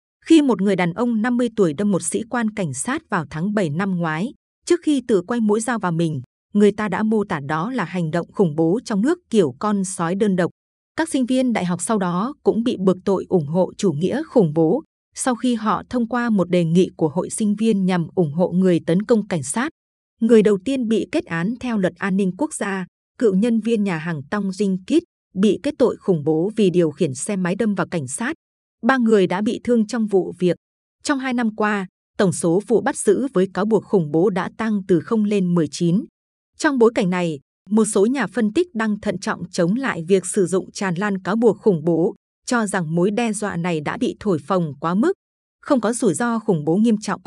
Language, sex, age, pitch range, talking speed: Vietnamese, female, 20-39, 180-235 Hz, 235 wpm